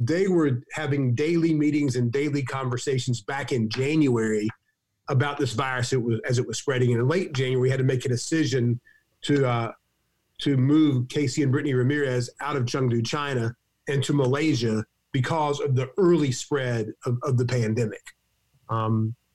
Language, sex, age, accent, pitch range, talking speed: English, male, 40-59, American, 125-155 Hz, 170 wpm